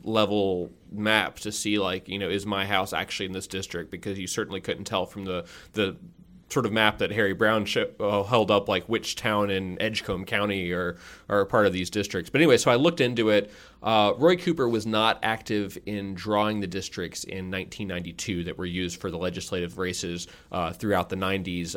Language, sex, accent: English, male, American